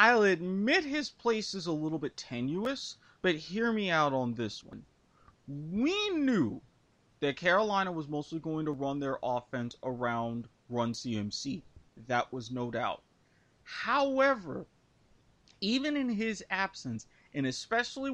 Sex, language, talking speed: male, English, 130 wpm